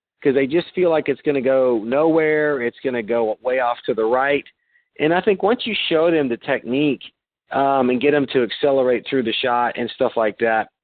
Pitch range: 120-150 Hz